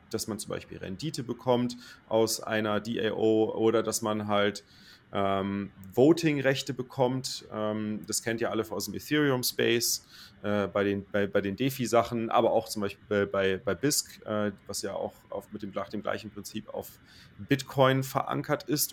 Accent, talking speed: German, 150 wpm